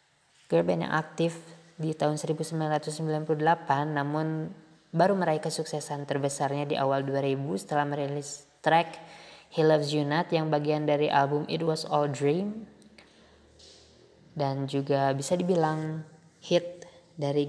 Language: Indonesian